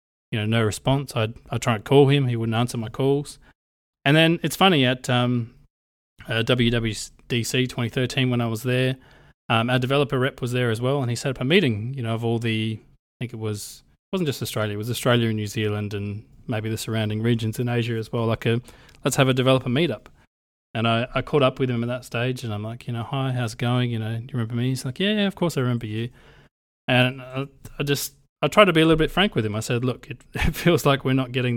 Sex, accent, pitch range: male, Australian, 115-135 Hz